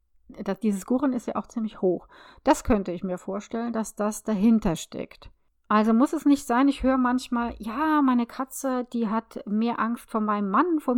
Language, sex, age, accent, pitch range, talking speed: German, female, 40-59, German, 210-260 Hz, 195 wpm